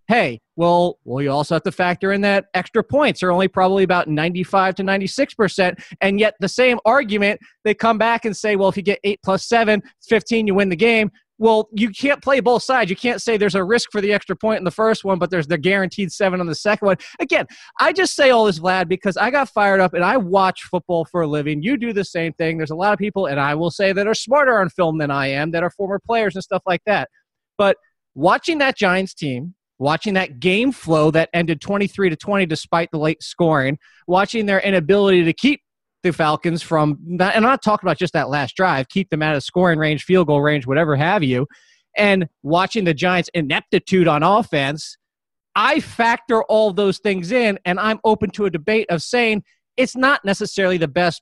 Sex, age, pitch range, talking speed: male, 20-39, 170-215 Hz, 225 wpm